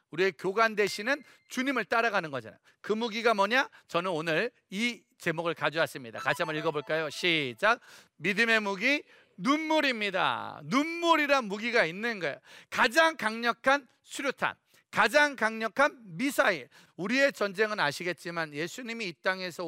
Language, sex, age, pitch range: Korean, male, 40-59, 185-255 Hz